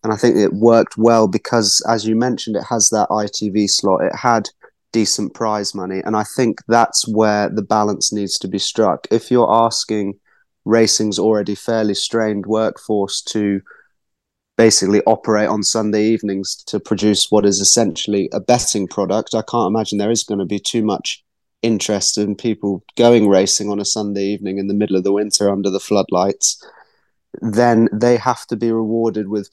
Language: English